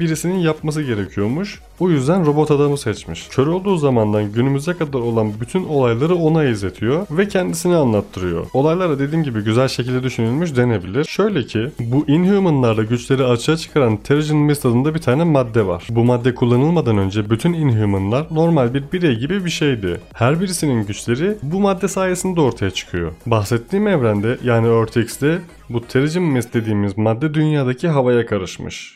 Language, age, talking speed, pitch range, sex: Turkish, 30-49, 155 wpm, 120-155 Hz, male